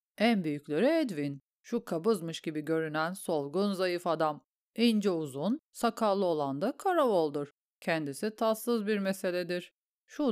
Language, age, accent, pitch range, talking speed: Turkish, 40-59, native, 160-230 Hz, 130 wpm